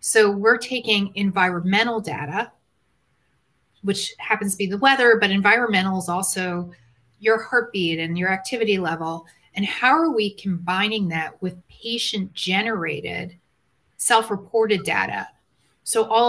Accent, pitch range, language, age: American, 180-225 Hz, English, 30-49